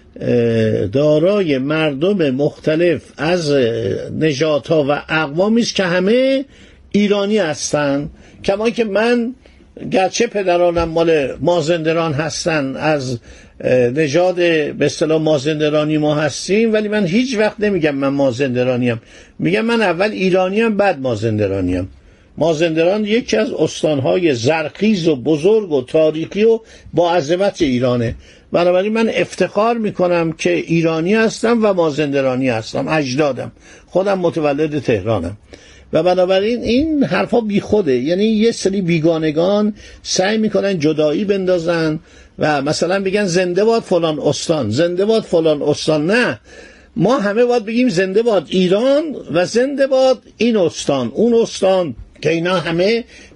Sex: male